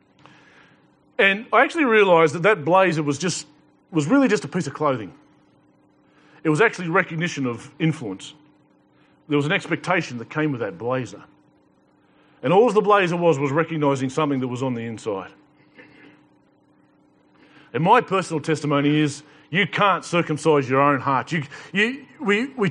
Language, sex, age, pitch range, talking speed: English, male, 40-59, 150-210 Hz, 155 wpm